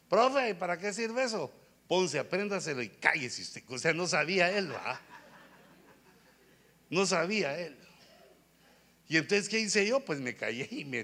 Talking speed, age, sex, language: 160 wpm, 60-79, male, Spanish